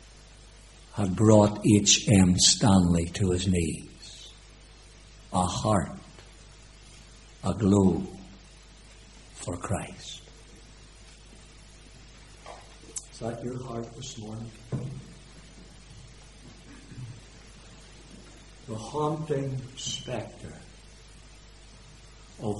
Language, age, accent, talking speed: English, 60-79, American, 60 wpm